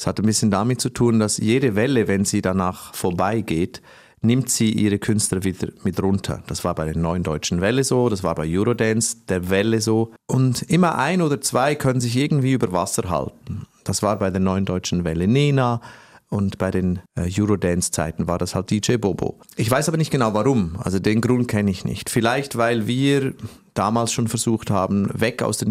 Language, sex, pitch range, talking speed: German, male, 95-125 Hz, 200 wpm